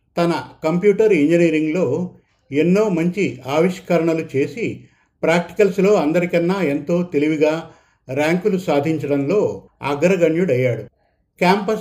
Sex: male